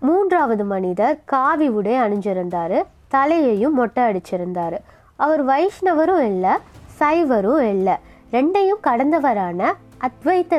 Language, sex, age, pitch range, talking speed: Tamil, female, 20-39, 230-335 Hz, 90 wpm